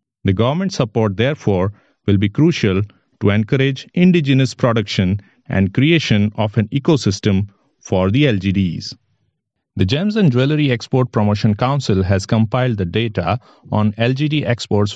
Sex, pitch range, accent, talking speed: male, 100-125 Hz, Indian, 130 wpm